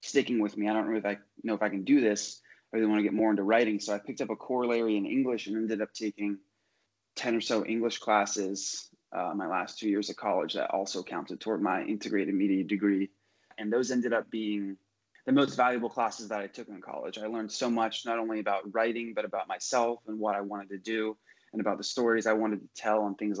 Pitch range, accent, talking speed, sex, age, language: 105-125 Hz, American, 240 wpm, male, 20-39, English